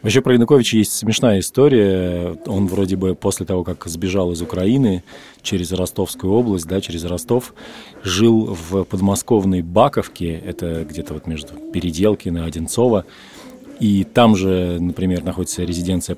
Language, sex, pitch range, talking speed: Russian, male, 85-100 Hz, 140 wpm